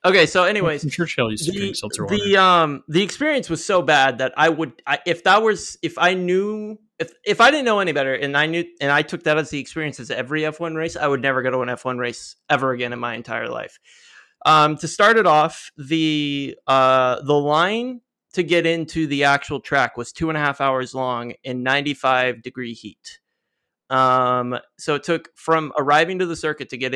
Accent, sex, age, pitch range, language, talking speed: American, male, 20-39, 130-170 Hz, English, 205 wpm